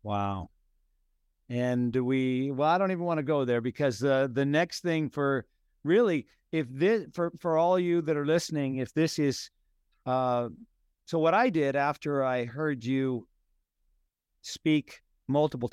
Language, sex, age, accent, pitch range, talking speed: English, male, 50-69, American, 125-160 Hz, 165 wpm